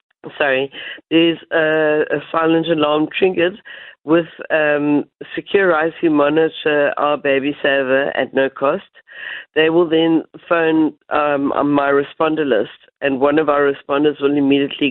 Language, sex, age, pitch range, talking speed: English, female, 60-79, 145-165 Hz, 135 wpm